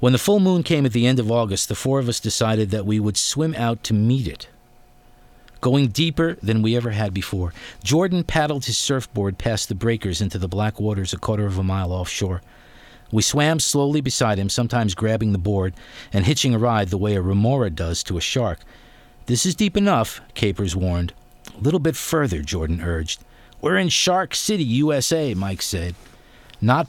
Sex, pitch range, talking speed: male, 100-135 Hz, 195 wpm